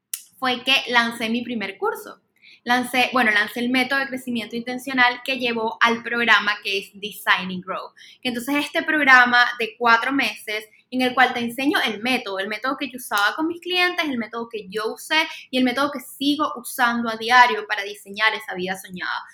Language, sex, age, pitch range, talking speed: Spanish, female, 10-29, 235-325 Hz, 190 wpm